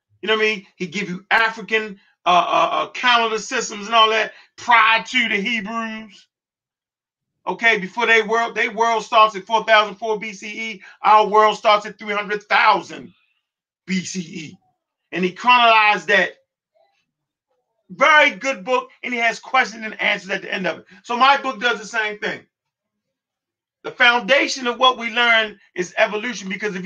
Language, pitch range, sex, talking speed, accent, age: English, 205-255 Hz, male, 170 wpm, American, 40-59